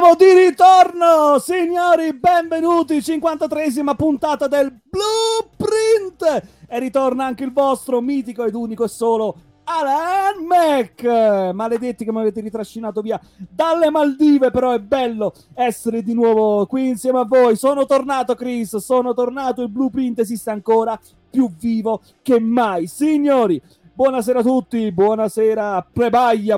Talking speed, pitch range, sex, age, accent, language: 130 wpm, 205-265 Hz, male, 30-49, native, Italian